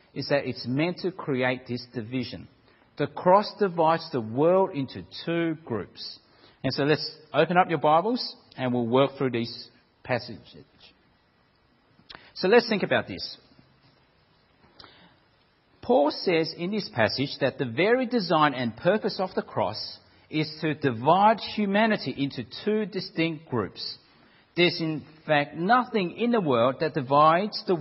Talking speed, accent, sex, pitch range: 140 wpm, Australian, male, 130-190 Hz